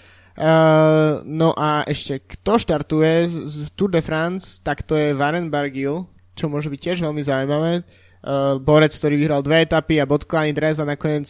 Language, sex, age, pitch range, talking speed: Slovak, male, 20-39, 135-155 Hz, 175 wpm